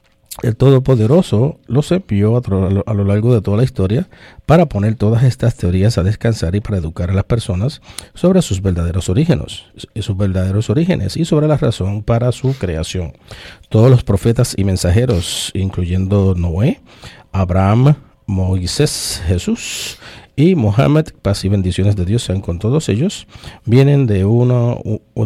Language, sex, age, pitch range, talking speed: English, male, 50-69, 95-120 Hz, 145 wpm